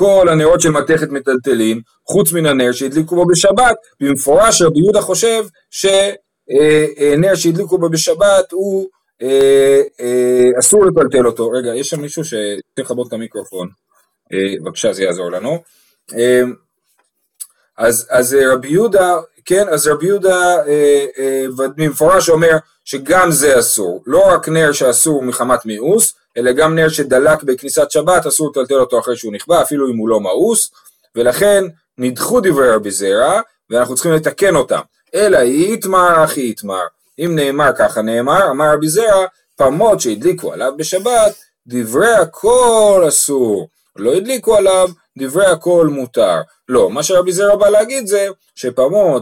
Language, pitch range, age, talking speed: Hebrew, 125-195 Hz, 30-49, 140 wpm